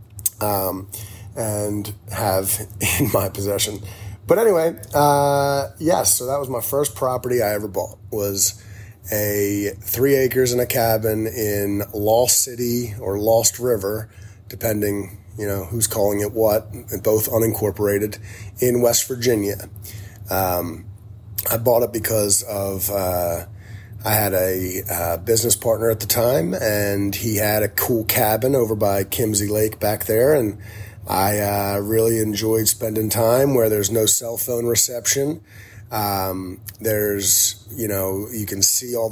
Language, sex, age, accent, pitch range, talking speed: English, male, 30-49, American, 100-110 Hz, 145 wpm